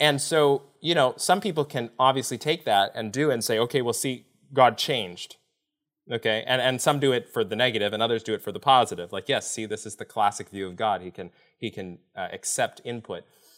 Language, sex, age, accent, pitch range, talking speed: English, male, 20-39, American, 110-150 Hz, 230 wpm